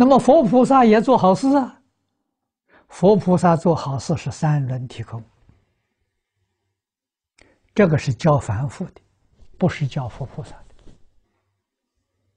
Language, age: Chinese, 60-79